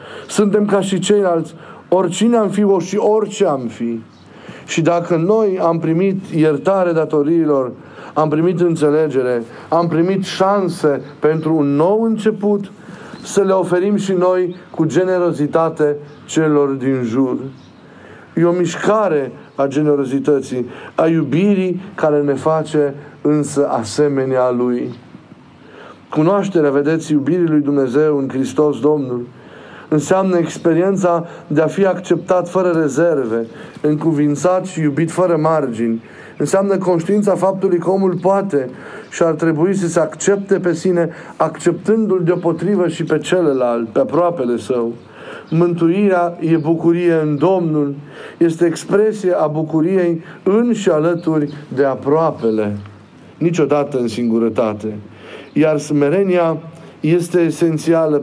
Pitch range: 145-180 Hz